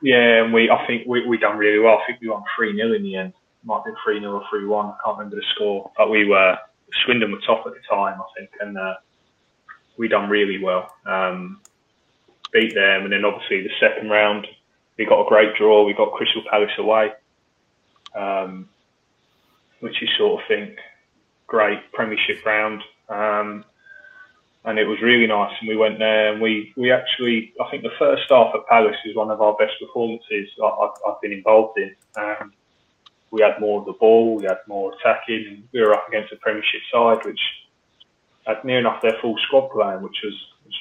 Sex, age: male, 20-39